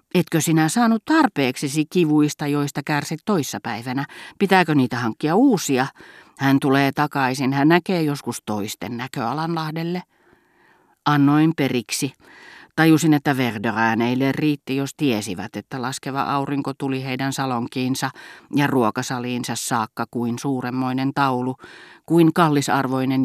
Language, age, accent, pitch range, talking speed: Finnish, 40-59, native, 120-145 Hz, 110 wpm